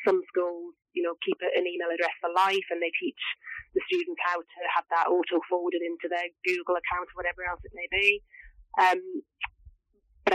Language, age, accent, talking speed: English, 30-49, British, 185 wpm